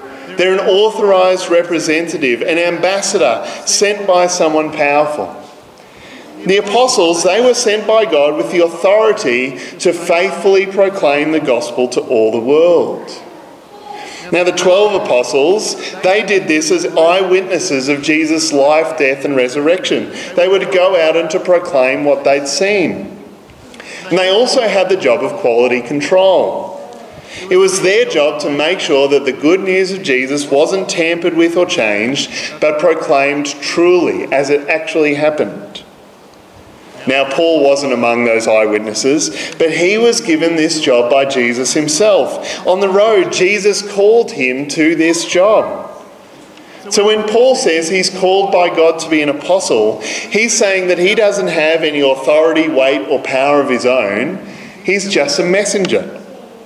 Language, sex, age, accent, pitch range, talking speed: English, male, 40-59, Australian, 145-195 Hz, 150 wpm